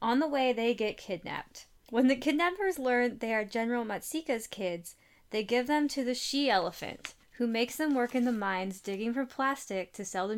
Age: 10-29